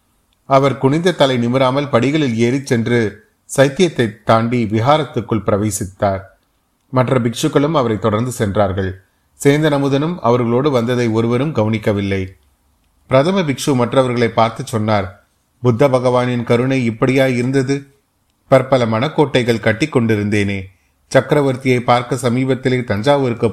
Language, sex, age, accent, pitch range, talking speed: Tamil, male, 30-49, native, 110-135 Hz, 100 wpm